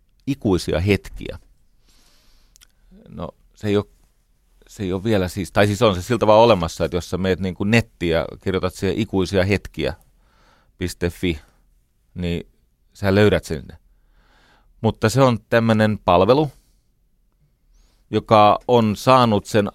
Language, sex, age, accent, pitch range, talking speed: Finnish, male, 30-49, native, 80-105 Hz, 120 wpm